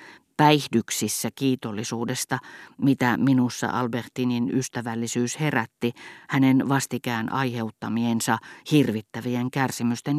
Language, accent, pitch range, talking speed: Finnish, native, 115-145 Hz, 70 wpm